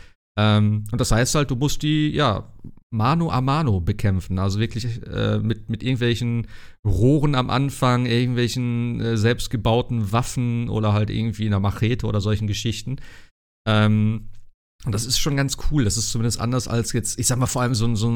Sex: male